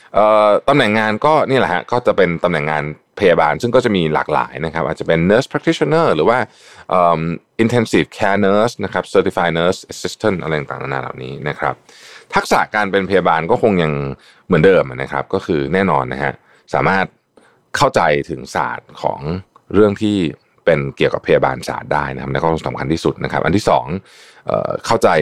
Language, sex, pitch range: Thai, male, 75-110 Hz